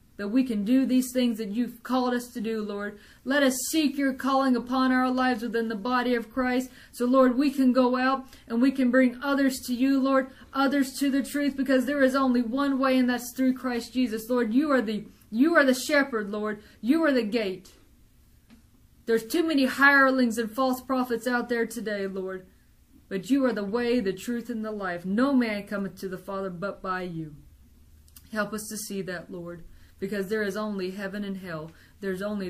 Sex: female